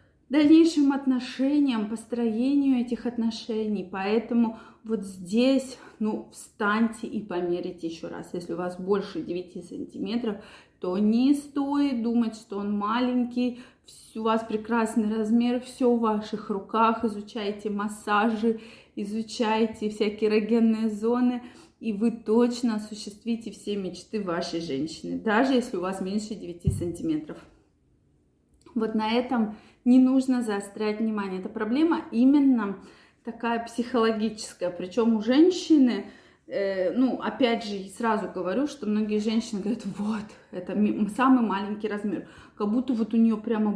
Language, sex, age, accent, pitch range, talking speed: Russian, female, 20-39, native, 210-255 Hz, 125 wpm